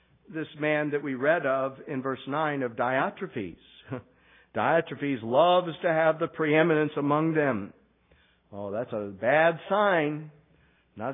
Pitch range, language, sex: 130-175 Hz, English, male